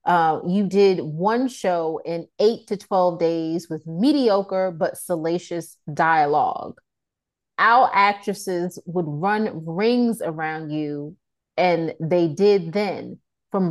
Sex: female